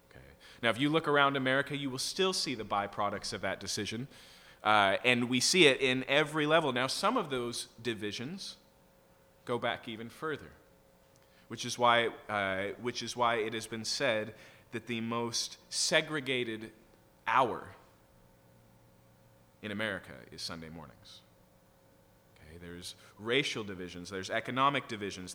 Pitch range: 90-140 Hz